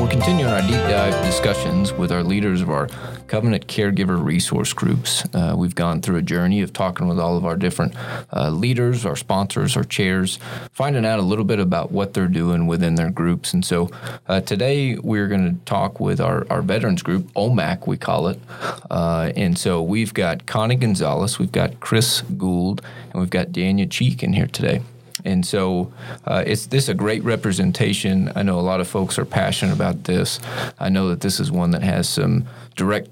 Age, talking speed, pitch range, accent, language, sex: 30-49, 200 wpm, 85-110 Hz, American, English, male